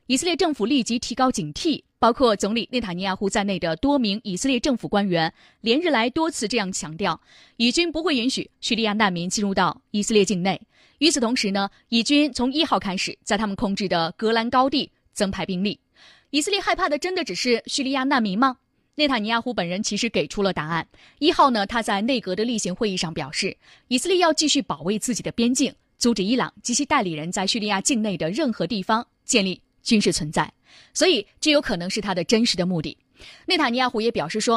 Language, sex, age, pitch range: Chinese, female, 20-39, 190-260 Hz